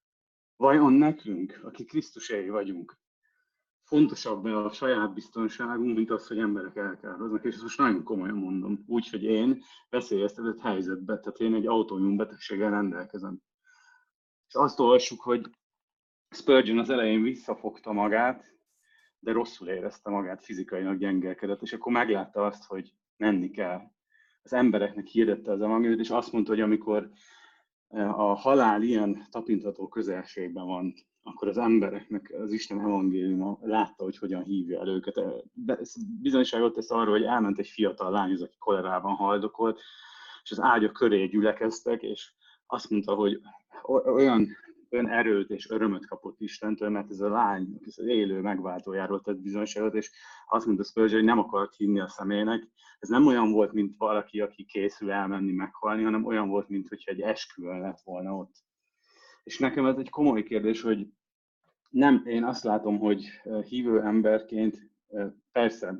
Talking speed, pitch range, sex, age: 150 wpm, 100-115 Hz, male, 30-49